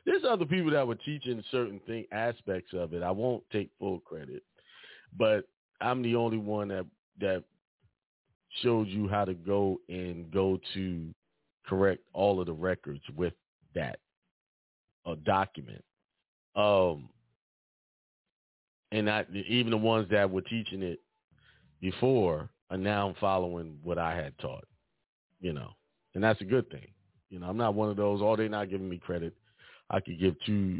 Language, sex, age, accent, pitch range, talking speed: English, male, 40-59, American, 90-115 Hz, 160 wpm